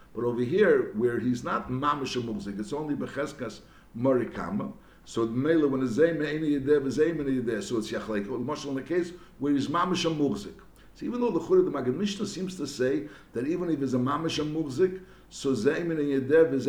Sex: male